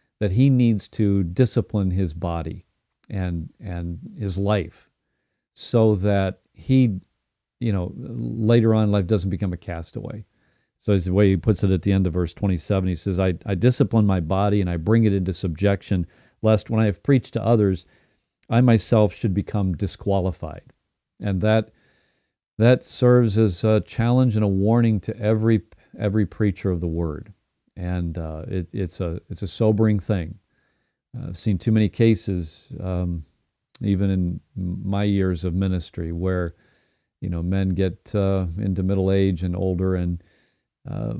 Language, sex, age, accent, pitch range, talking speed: English, male, 50-69, American, 90-110 Hz, 165 wpm